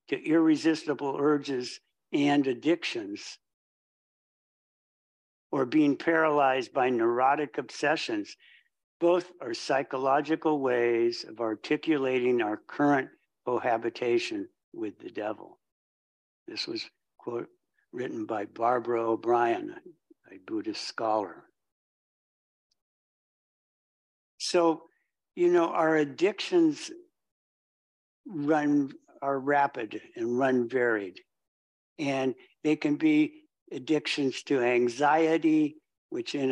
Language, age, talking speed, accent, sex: English, 60-79, 85 wpm, American, male